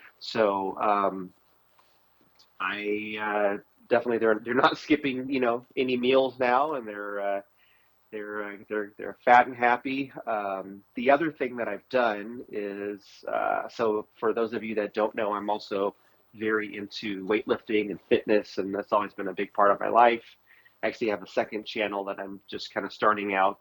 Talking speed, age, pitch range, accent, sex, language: 180 wpm, 30-49, 100-120 Hz, American, male, English